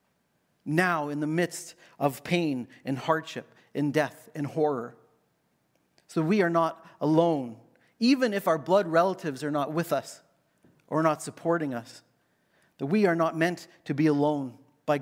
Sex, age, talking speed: male, 40-59, 155 wpm